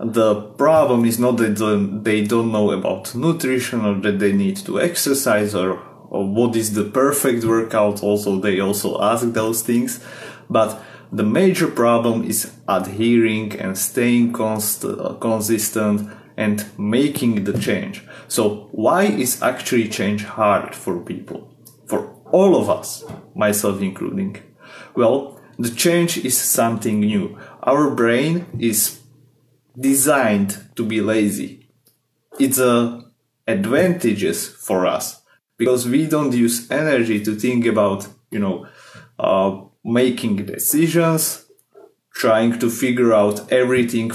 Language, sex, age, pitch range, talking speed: English, male, 30-49, 105-130 Hz, 125 wpm